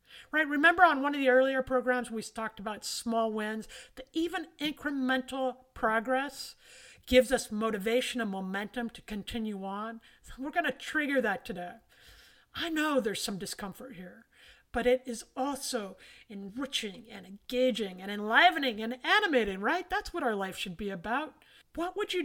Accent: American